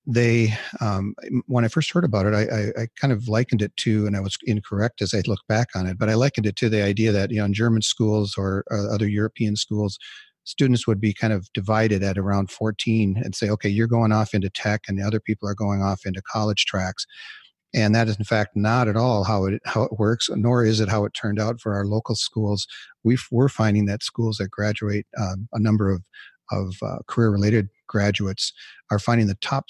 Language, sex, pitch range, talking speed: English, male, 100-115 Hz, 230 wpm